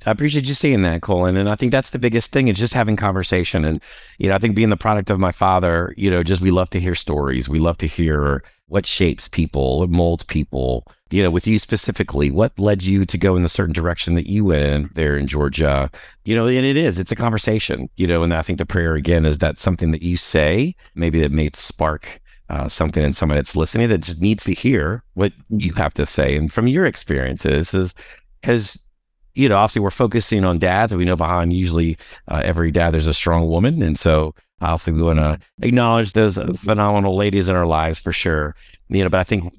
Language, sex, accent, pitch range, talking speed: English, male, American, 80-105 Hz, 235 wpm